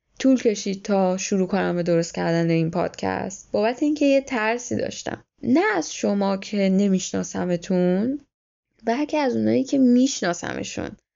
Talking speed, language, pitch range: 130 wpm, Persian, 185-240 Hz